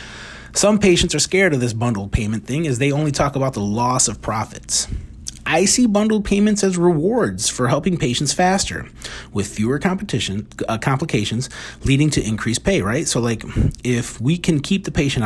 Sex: male